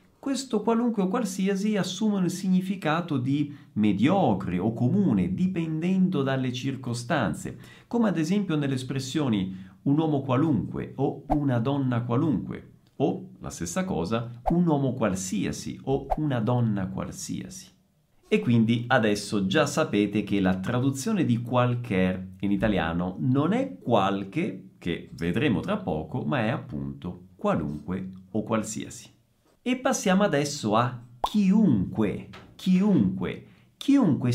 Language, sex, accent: Italian, male, native